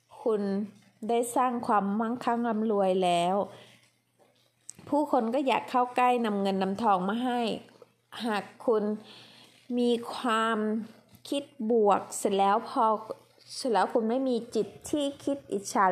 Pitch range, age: 205-250 Hz, 20-39